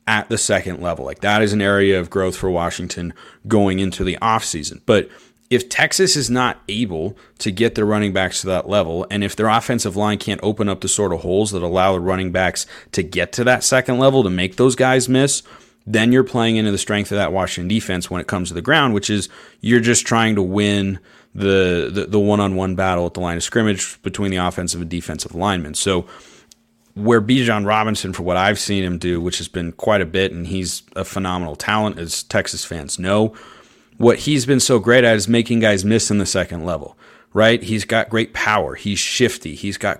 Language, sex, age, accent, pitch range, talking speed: English, male, 30-49, American, 90-115 Hz, 220 wpm